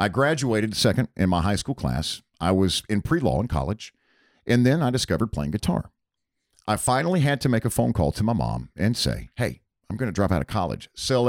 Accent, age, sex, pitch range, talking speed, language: American, 50-69, male, 90-130 Hz, 225 wpm, English